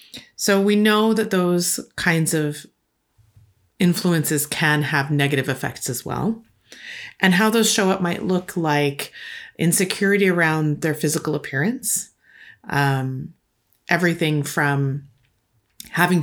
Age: 30-49